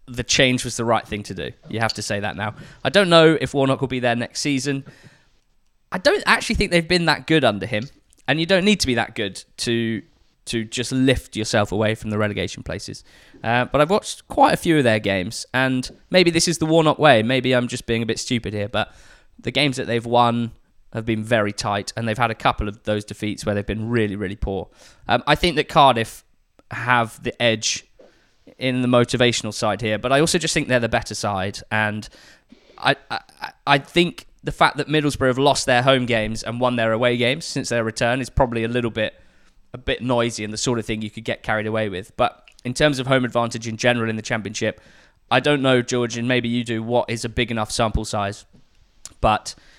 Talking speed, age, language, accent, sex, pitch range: 230 wpm, 10-29, English, British, male, 110-130 Hz